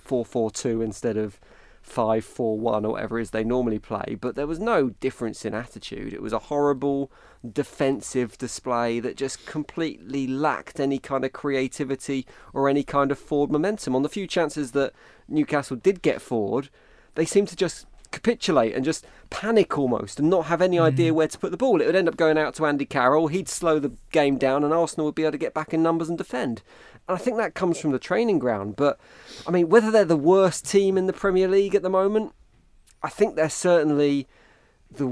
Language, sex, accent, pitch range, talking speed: English, male, British, 120-160 Hz, 205 wpm